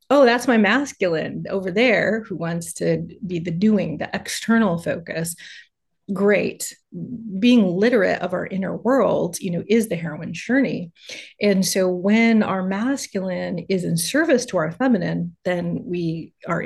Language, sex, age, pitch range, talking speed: English, female, 30-49, 170-225 Hz, 150 wpm